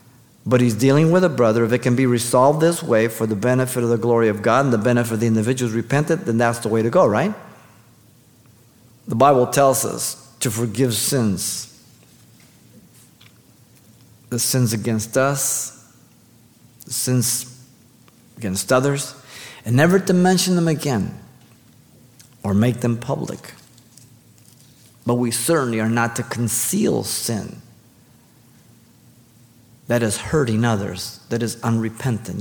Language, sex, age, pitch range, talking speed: English, male, 50-69, 115-135 Hz, 140 wpm